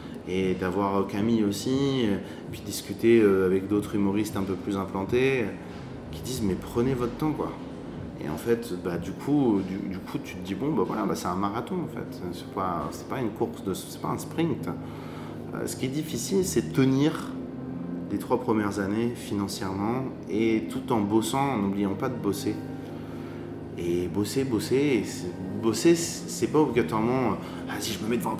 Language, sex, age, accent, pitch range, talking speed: French, male, 30-49, French, 100-130 Hz, 195 wpm